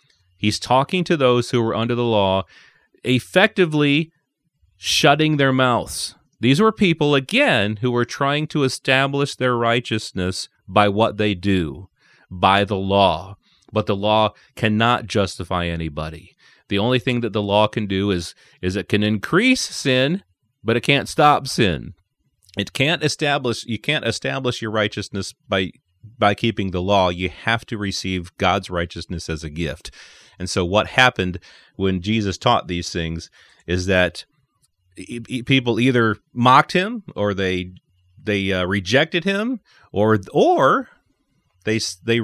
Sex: male